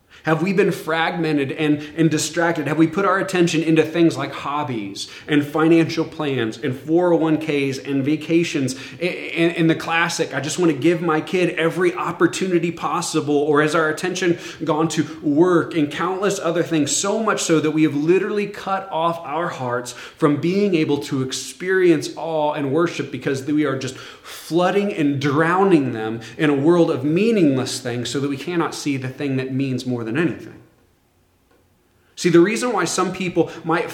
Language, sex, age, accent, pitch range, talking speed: English, male, 30-49, American, 145-175 Hz, 175 wpm